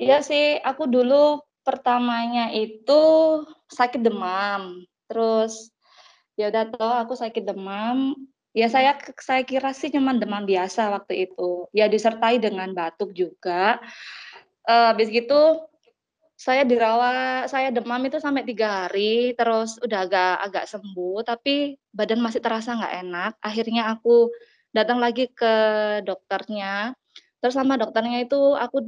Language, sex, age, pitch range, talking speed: Indonesian, female, 20-39, 205-255 Hz, 130 wpm